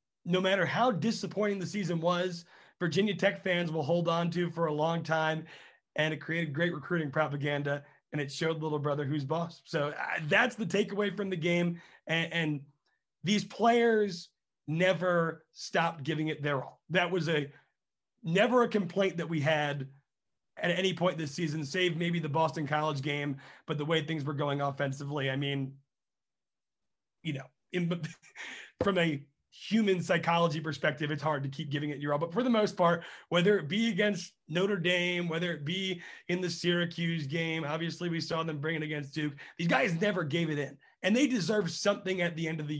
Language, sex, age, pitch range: English, male, 30-49, 150-180 Hz